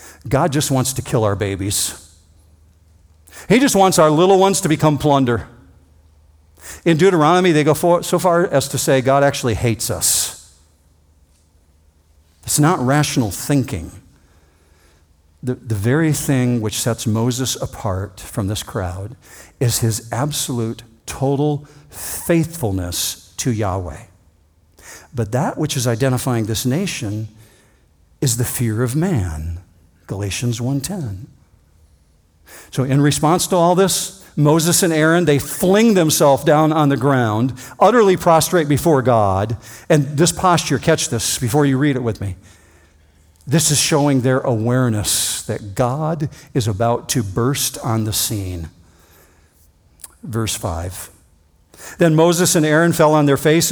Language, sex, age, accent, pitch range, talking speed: English, male, 50-69, American, 90-150 Hz, 135 wpm